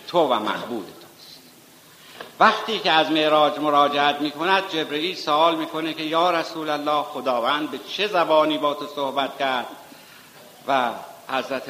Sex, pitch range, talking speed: male, 125-160 Hz, 130 wpm